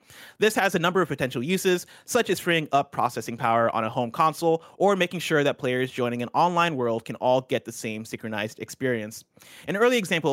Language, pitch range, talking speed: English, 125-175 Hz, 210 wpm